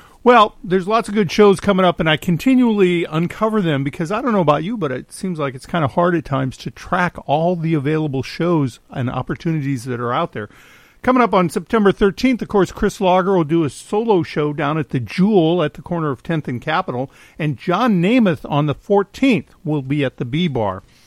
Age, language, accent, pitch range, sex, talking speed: 50-69, English, American, 145-195 Hz, male, 220 wpm